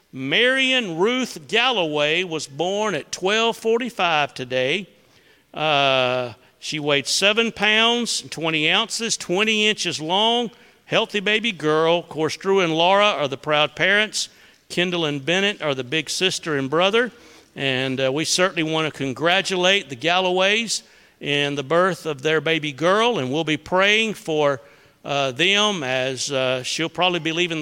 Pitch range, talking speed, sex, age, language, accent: 155-210 Hz, 150 wpm, male, 50-69, English, American